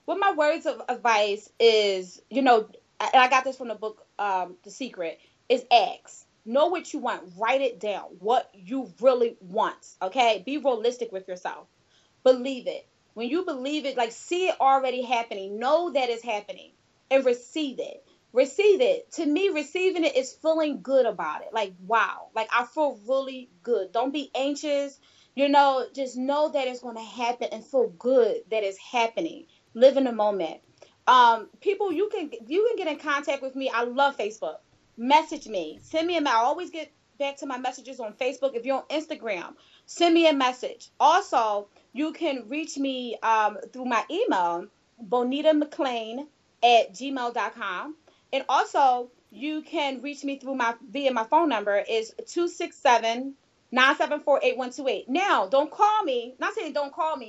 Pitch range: 235-305 Hz